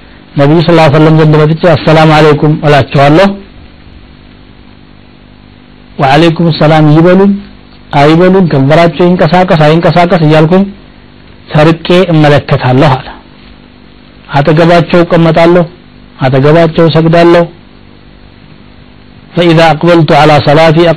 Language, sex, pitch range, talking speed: Amharic, male, 140-165 Hz, 60 wpm